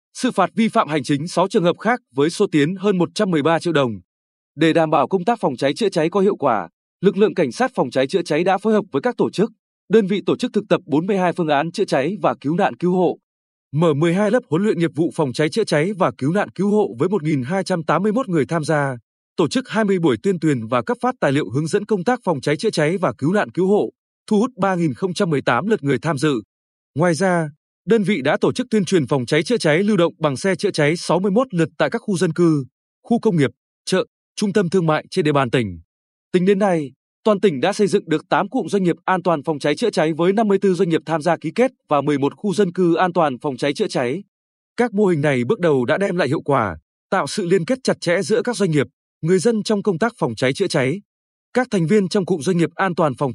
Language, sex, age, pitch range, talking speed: Vietnamese, male, 20-39, 150-205 Hz, 255 wpm